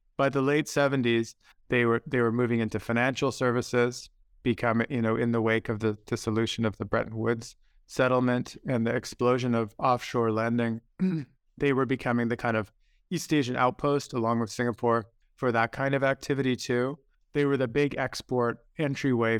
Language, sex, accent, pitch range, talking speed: English, male, American, 115-135 Hz, 175 wpm